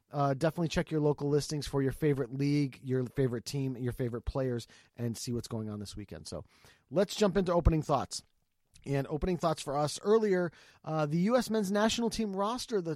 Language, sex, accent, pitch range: English, male, American, 140-195 Hz